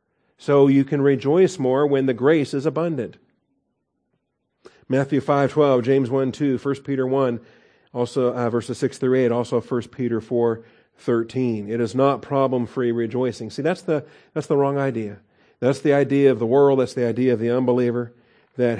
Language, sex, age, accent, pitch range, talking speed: English, male, 40-59, American, 120-145 Hz, 175 wpm